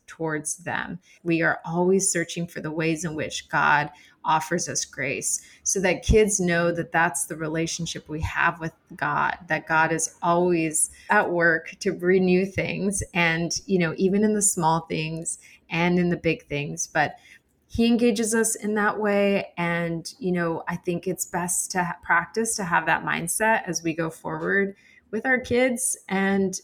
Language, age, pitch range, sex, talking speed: English, 20-39, 160-195 Hz, female, 175 wpm